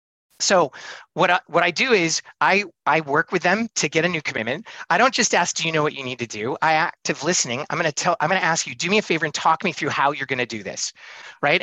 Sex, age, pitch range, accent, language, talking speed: male, 30-49, 145-195 Hz, American, English, 275 wpm